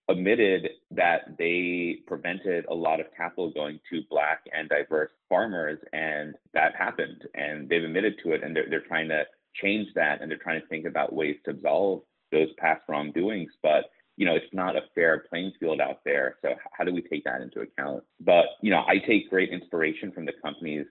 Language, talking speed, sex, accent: English, 200 wpm, male, American